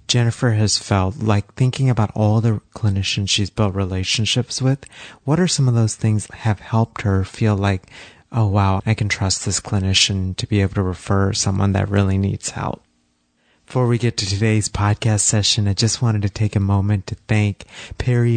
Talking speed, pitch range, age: 195 wpm, 100-115 Hz, 30-49